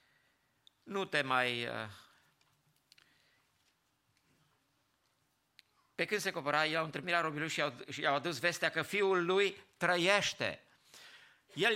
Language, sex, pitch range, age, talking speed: English, male, 130-165 Hz, 50-69, 105 wpm